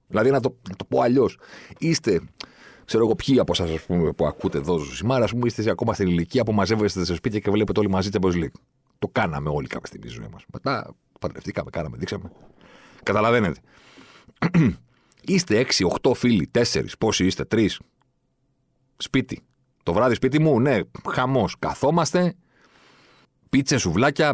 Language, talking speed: Greek, 155 wpm